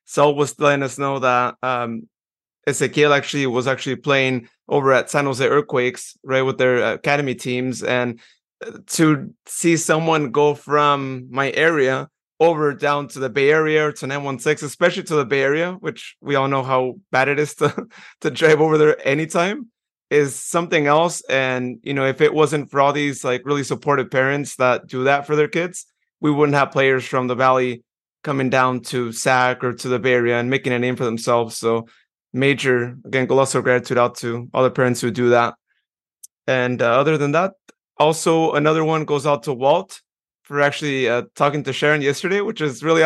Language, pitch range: English, 130-150 Hz